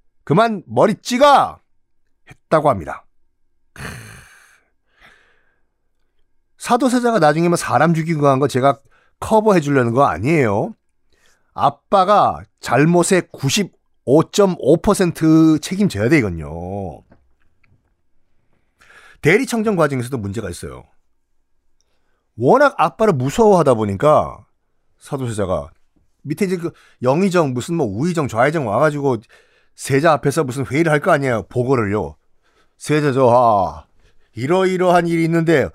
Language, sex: Korean, male